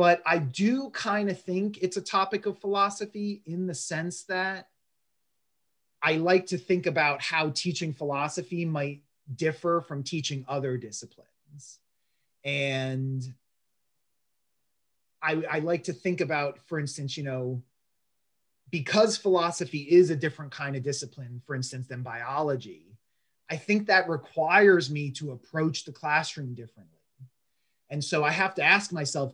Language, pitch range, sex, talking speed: English, 135-180 Hz, male, 140 wpm